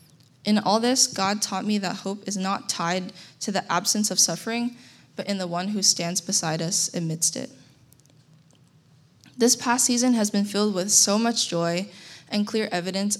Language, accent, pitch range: English, American, 170-200 Hz